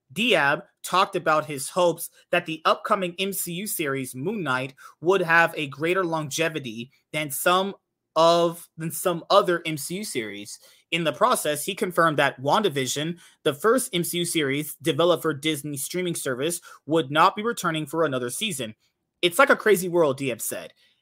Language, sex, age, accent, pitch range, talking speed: English, male, 30-49, American, 150-185 Hz, 155 wpm